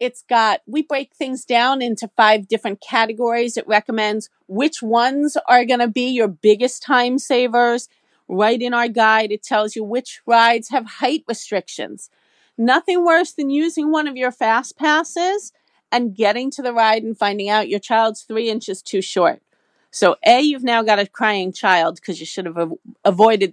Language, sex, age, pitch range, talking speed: English, female, 40-59, 215-290 Hz, 180 wpm